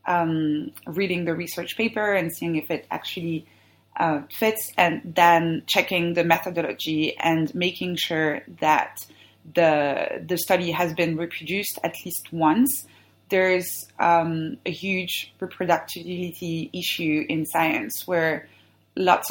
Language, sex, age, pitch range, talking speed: English, female, 20-39, 160-180 Hz, 125 wpm